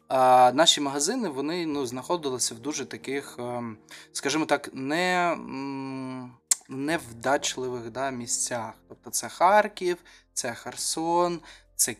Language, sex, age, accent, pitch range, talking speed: Ukrainian, male, 20-39, native, 120-140 Hz, 105 wpm